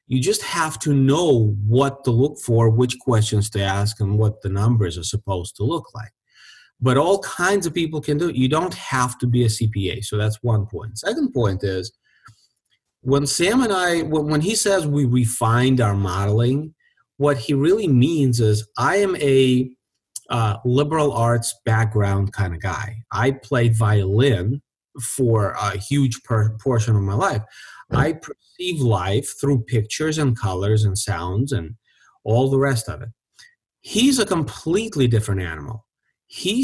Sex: male